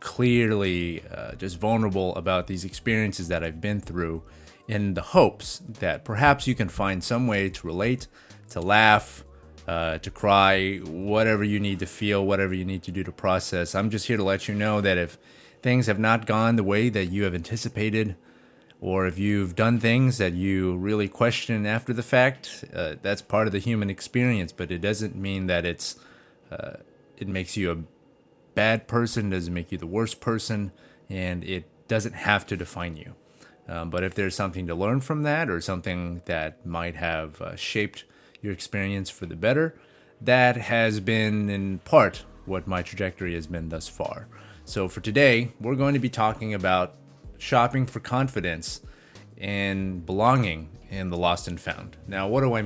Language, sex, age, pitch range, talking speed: English, male, 30-49, 90-115 Hz, 180 wpm